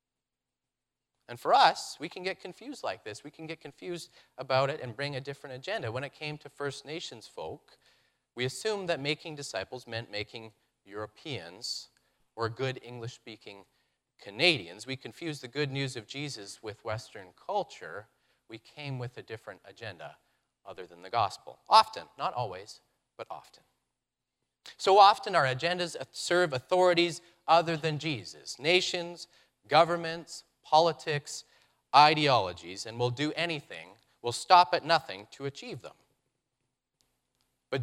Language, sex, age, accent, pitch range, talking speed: English, male, 30-49, American, 115-160 Hz, 145 wpm